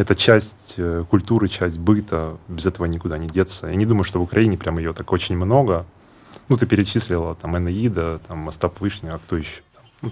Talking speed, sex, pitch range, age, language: 195 wpm, male, 85-110 Hz, 20-39, Ukrainian